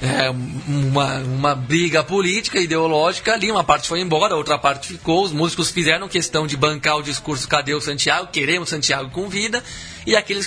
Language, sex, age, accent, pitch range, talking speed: Portuguese, male, 20-39, Brazilian, 145-175 Hz, 170 wpm